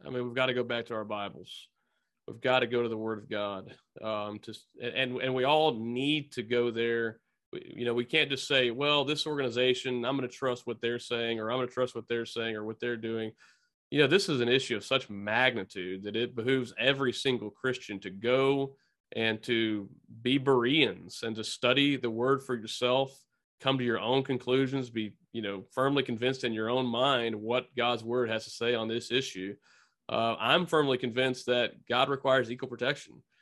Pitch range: 115-135 Hz